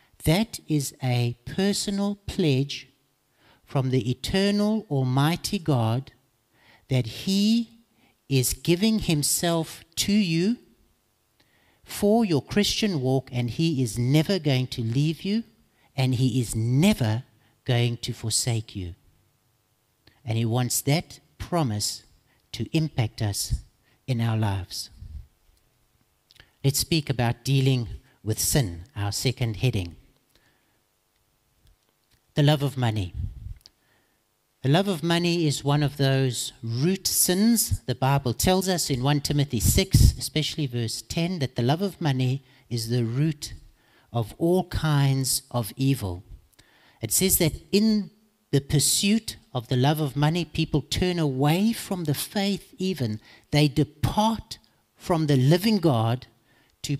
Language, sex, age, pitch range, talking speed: English, male, 60-79, 115-165 Hz, 125 wpm